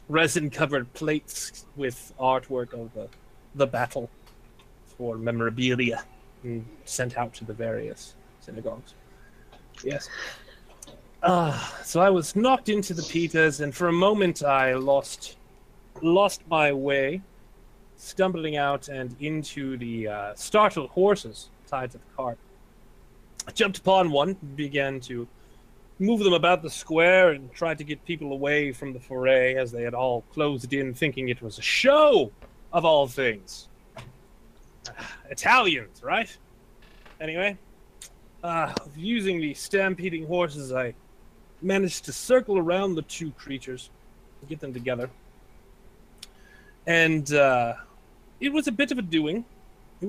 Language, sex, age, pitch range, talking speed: English, male, 30-49, 130-180 Hz, 130 wpm